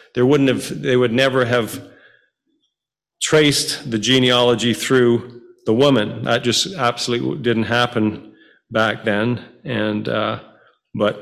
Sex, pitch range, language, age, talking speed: male, 115-125 Hz, English, 40-59, 125 wpm